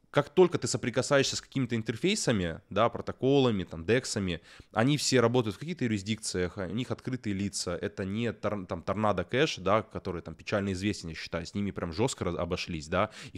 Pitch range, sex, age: 100-130 Hz, male, 20-39